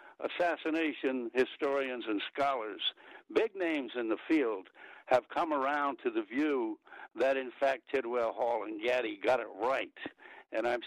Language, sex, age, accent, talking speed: English, male, 60-79, American, 150 wpm